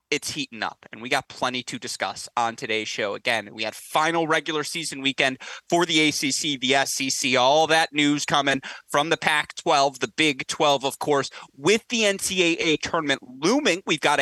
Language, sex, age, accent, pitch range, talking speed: English, male, 30-49, American, 125-160 Hz, 180 wpm